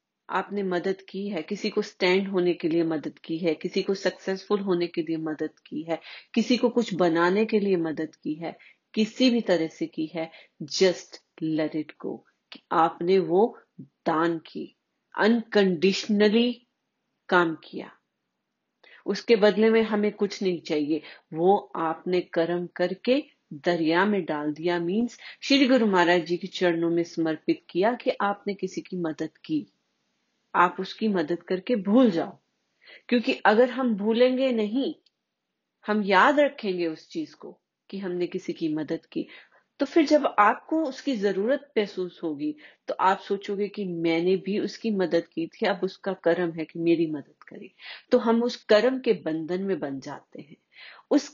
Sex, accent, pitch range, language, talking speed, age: female, native, 170-230 Hz, Hindi, 160 wpm, 40-59